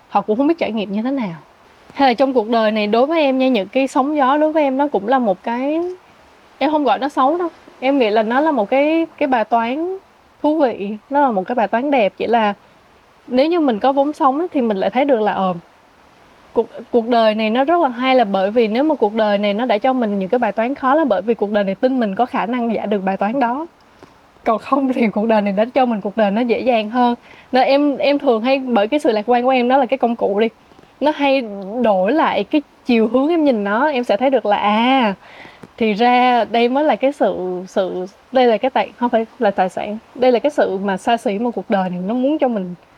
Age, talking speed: 20-39, 270 wpm